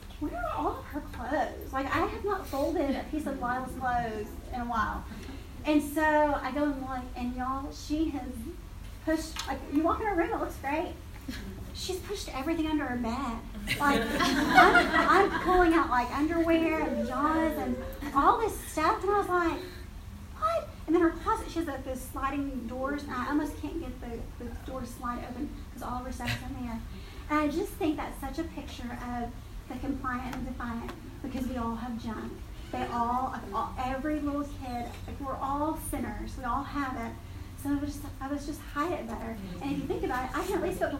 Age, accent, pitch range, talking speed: 30-49, American, 255-320 Hz, 210 wpm